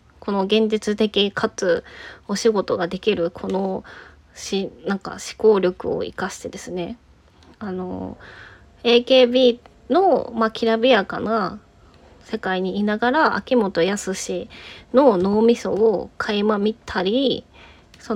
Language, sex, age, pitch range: Japanese, female, 20-39, 195-245 Hz